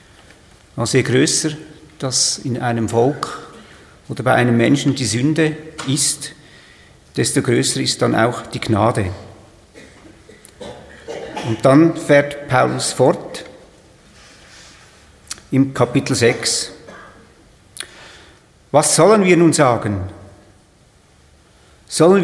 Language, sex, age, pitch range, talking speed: German, male, 50-69, 115-155 Hz, 90 wpm